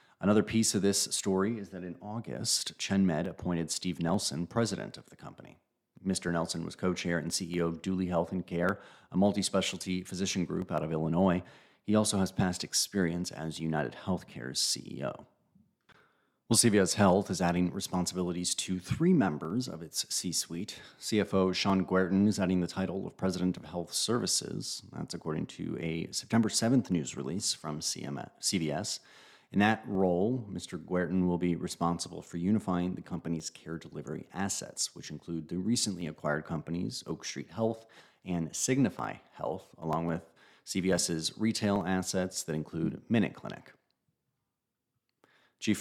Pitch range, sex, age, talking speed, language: 85-100 Hz, male, 40-59, 150 wpm, English